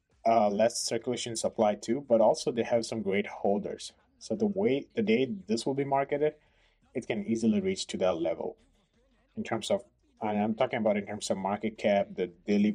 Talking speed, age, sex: 200 wpm, 20-39, male